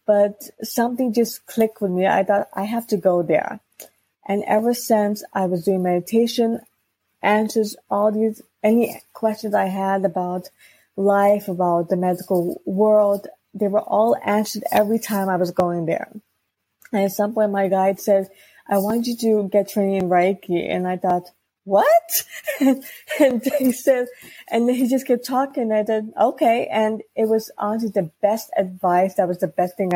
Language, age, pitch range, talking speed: English, 20-39, 180-220 Hz, 170 wpm